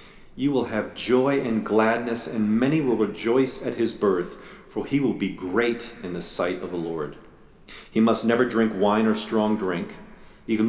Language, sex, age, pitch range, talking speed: English, male, 40-59, 105-125 Hz, 185 wpm